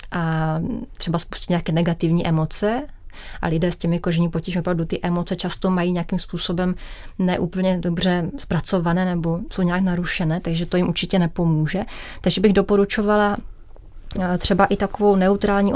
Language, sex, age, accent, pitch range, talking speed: Czech, female, 30-49, native, 170-195 Hz, 145 wpm